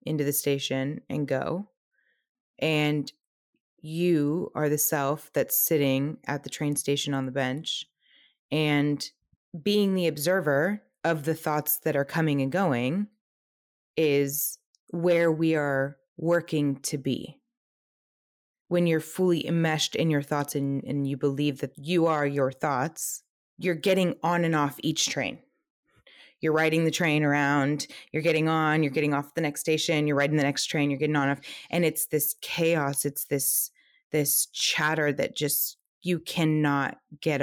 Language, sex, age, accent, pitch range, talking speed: English, female, 20-39, American, 145-165 Hz, 155 wpm